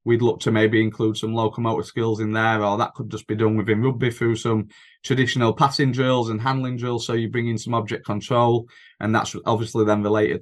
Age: 20-39